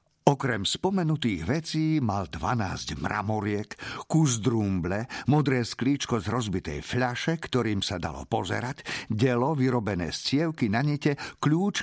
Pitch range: 105-160 Hz